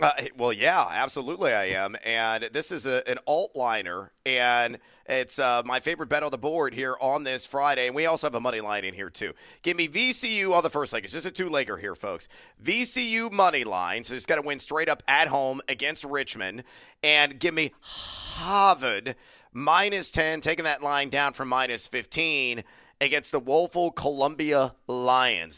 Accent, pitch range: American, 120-150 Hz